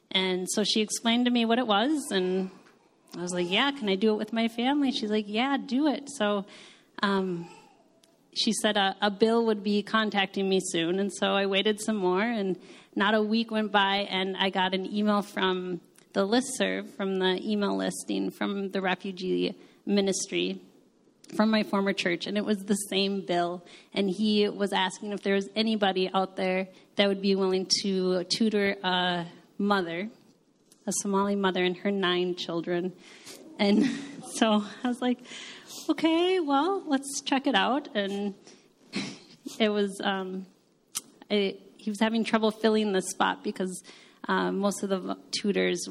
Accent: American